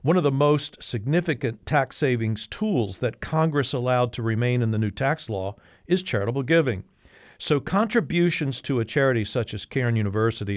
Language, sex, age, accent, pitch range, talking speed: English, male, 50-69, American, 105-140 Hz, 170 wpm